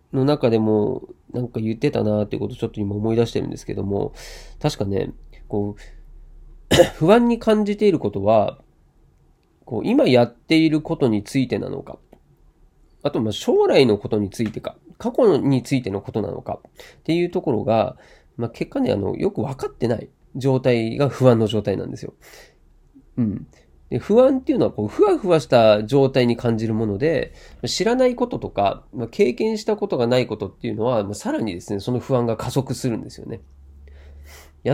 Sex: male